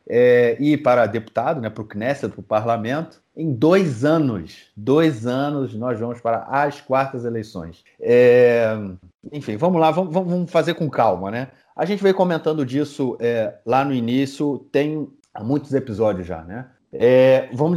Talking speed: 160 wpm